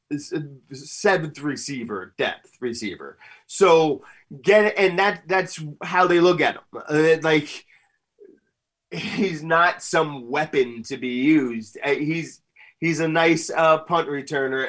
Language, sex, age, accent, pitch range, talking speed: English, male, 30-49, American, 115-150 Hz, 125 wpm